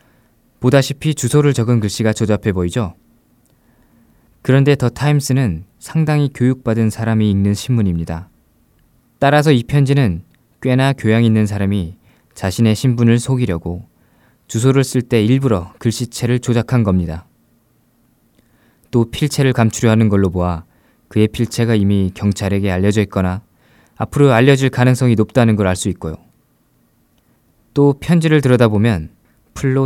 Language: Korean